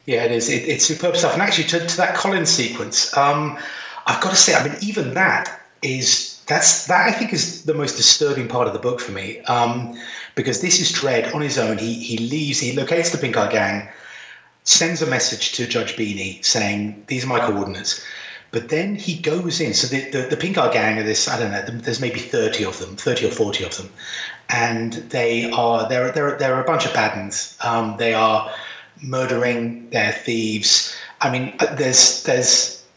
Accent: British